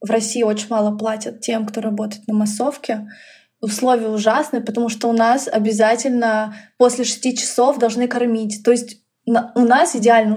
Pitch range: 215-250 Hz